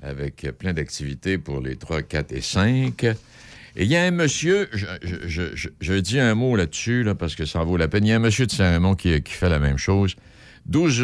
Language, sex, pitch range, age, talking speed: French, male, 75-100 Hz, 60-79, 245 wpm